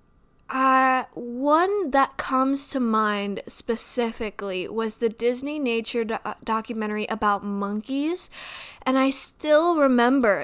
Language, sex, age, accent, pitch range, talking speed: English, female, 20-39, American, 215-270 Hz, 110 wpm